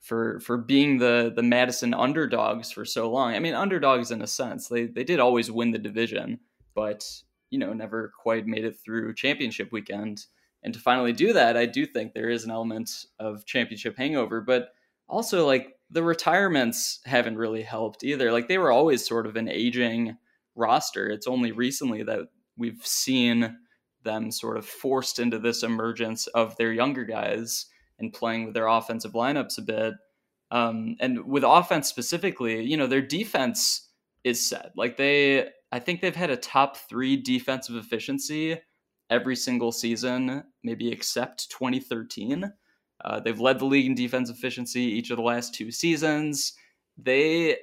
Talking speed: 170 wpm